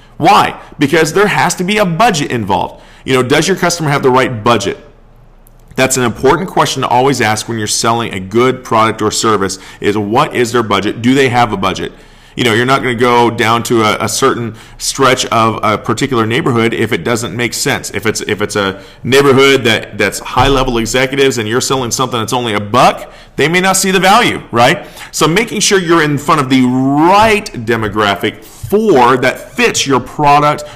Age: 40-59